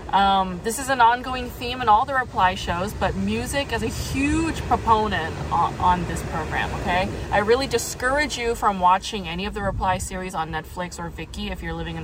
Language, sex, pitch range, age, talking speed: English, female, 175-230 Hz, 20-39, 205 wpm